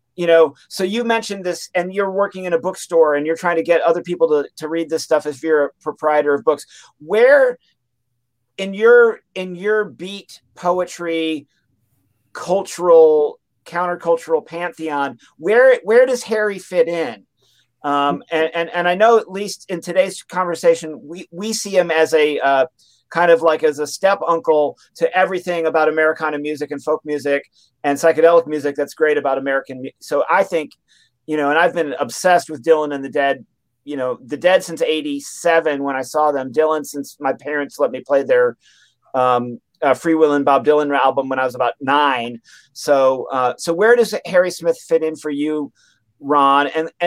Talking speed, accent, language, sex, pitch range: 185 wpm, American, English, male, 145-180 Hz